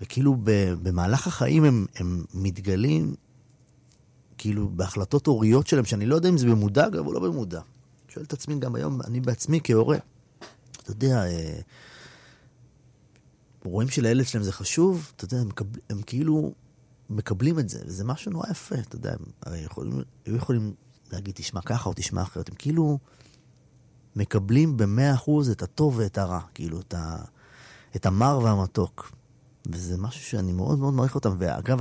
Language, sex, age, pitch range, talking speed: Hebrew, male, 30-49, 95-130 Hz, 155 wpm